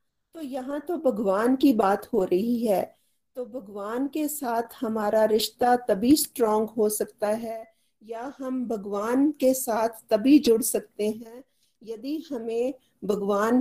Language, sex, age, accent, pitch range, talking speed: Hindi, female, 40-59, native, 205-245 Hz, 140 wpm